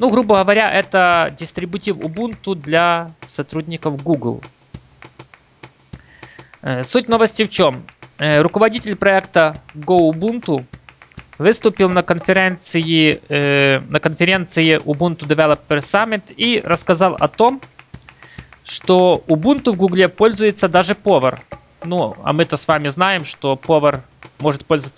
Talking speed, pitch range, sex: 110 wpm, 140-190 Hz, male